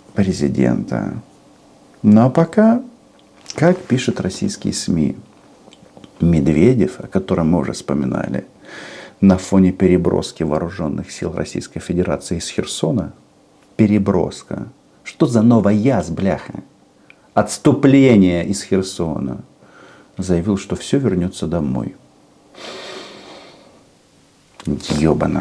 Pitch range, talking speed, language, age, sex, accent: 90-115 Hz, 90 wpm, Russian, 50-69, male, native